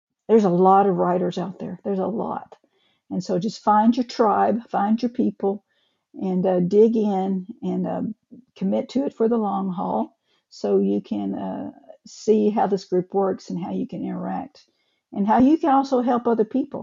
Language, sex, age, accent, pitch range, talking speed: English, female, 50-69, American, 190-235 Hz, 195 wpm